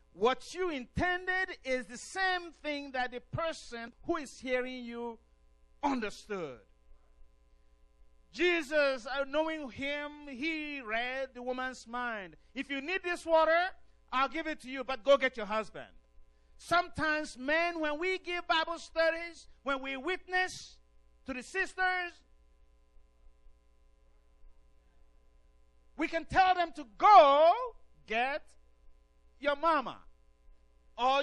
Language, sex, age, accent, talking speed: English, male, 50-69, Nigerian, 115 wpm